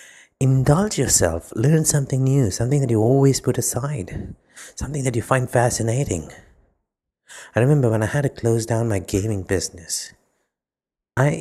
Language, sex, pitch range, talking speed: English, male, 105-140 Hz, 145 wpm